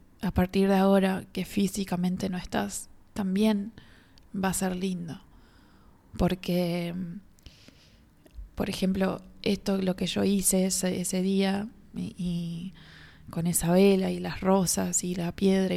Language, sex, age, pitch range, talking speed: Spanish, female, 20-39, 175-195 Hz, 135 wpm